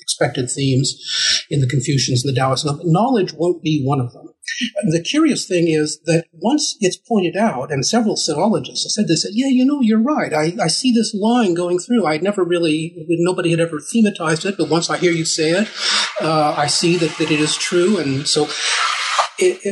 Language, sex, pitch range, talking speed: English, male, 145-185 Hz, 205 wpm